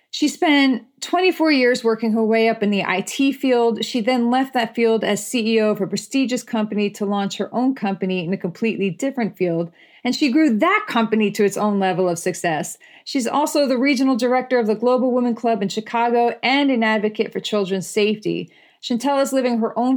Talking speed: 200 wpm